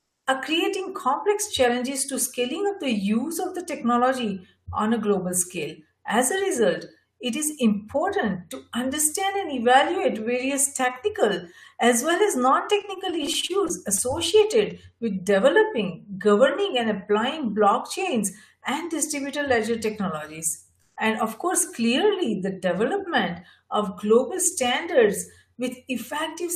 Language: English